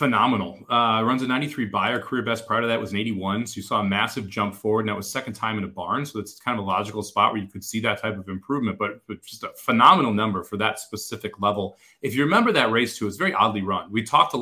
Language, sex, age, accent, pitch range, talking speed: English, male, 30-49, American, 105-145 Hz, 285 wpm